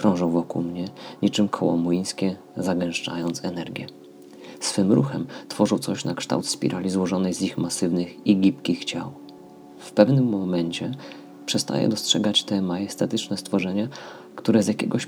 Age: 30-49